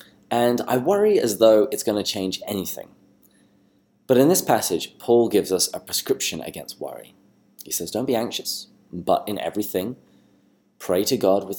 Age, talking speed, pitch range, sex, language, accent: 20-39, 165 wpm, 90-110 Hz, male, English, British